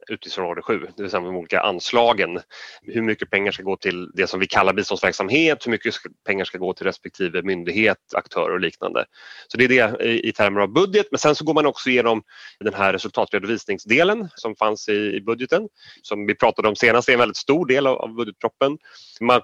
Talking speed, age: 205 wpm, 30-49